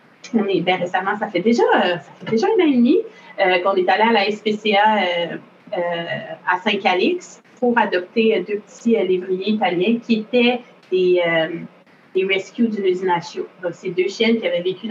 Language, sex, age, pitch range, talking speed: French, female, 30-49, 175-220 Hz, 195 wpm